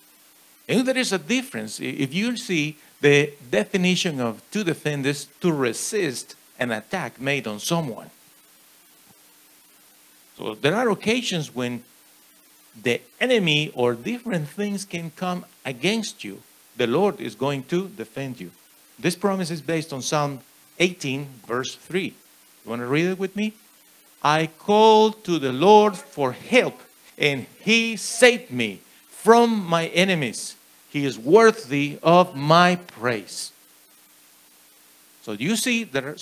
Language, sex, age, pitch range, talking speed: English, male, 50-69, 135-205 Hz, 135 wpm